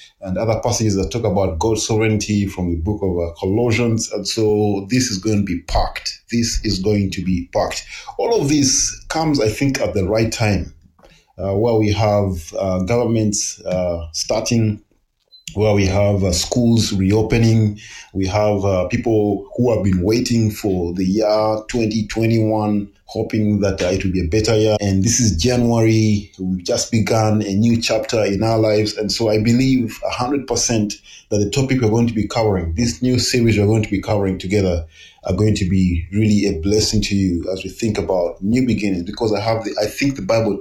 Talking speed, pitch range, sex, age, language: 190 wpm, 100-115 Hz, male, 30-49, English